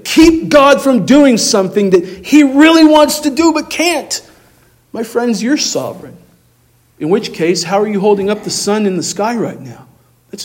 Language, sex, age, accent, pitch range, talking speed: English, male, 40-59, American, 175-230 Hz, 190 wpm